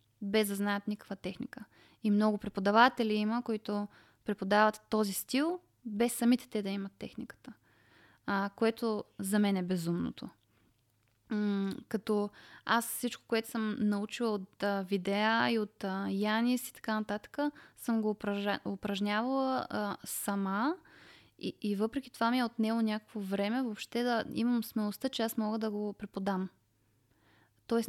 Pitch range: 200-230 Hz